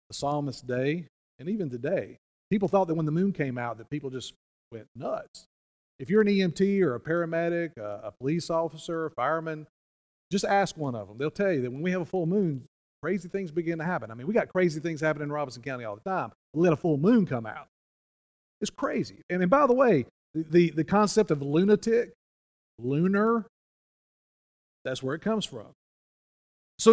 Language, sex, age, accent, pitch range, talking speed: English, male, 40-59, American, 150-225 Hz, 205 wpm